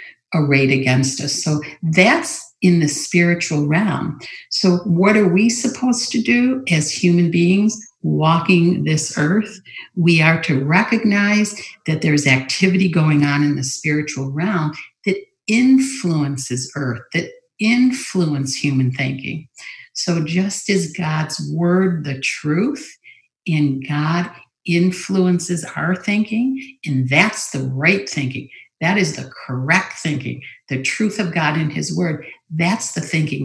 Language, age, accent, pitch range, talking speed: English, 60-79, American, 150-195 Hz, 135 wpm